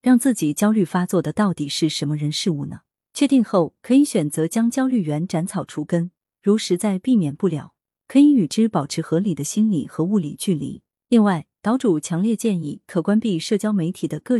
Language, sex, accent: Chinese, female, native